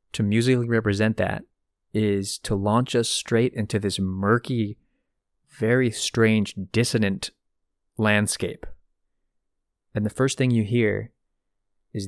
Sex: male